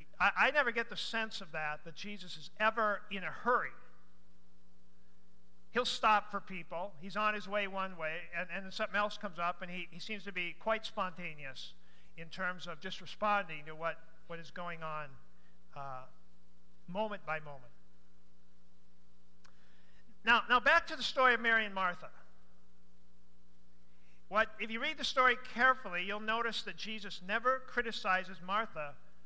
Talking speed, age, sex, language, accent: 160 wpm, 50-69, male, English, American